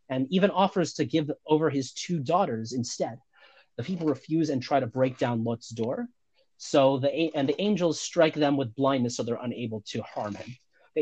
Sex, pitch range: male, 125-160 Hz